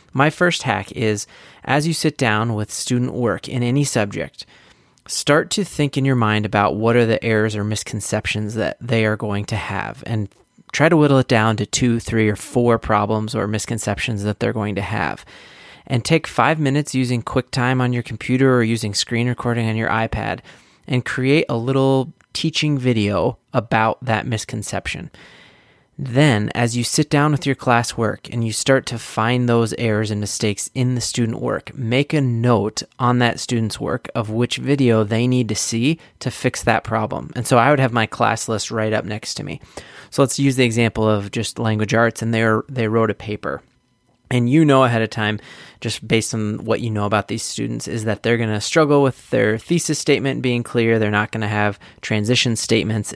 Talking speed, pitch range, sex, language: 200 wpm, 110-130 Hz, male, English